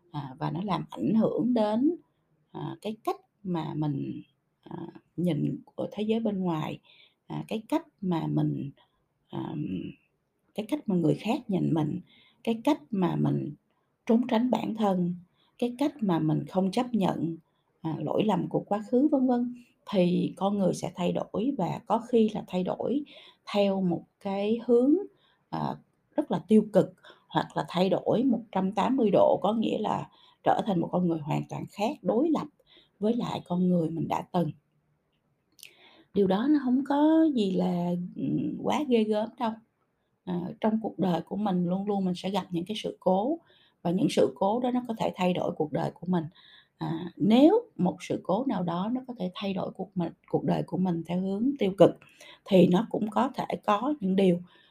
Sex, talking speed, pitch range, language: female, 175 wpm, 170-235 Hz, Vietnamese